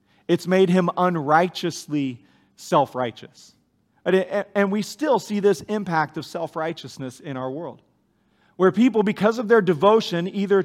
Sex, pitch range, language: male, 150-205 Hz, English